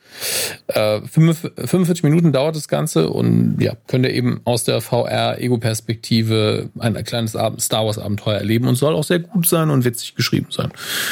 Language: German